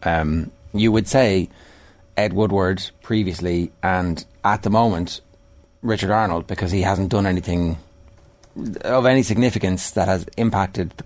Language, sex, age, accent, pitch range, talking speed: English, male, 30-49, Irish, 95-130 Hz, 135 wpm